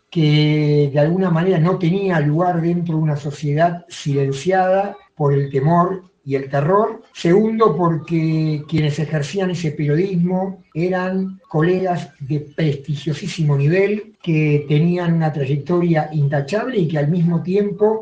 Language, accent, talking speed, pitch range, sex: Spanish, Argentinian, 130 wpm, 150-190 Hz, male